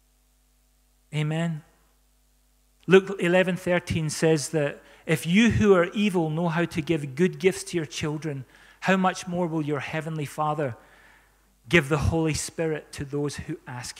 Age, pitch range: 40-59, 145-170 Hz